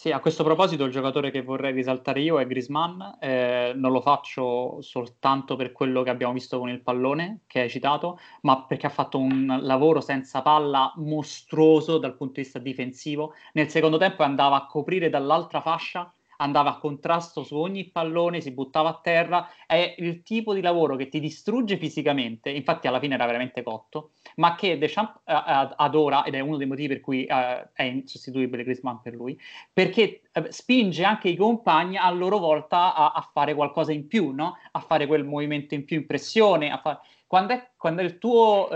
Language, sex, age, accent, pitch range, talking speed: Italian, male, 20-39, native, 135-175 Hz, 190 wpm